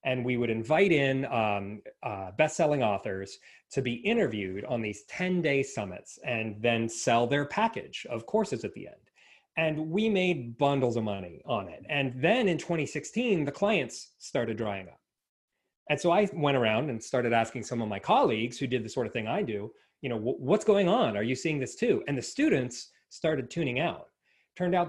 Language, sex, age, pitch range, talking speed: English, male, 30-49, 115-165 Hz, 195 wpm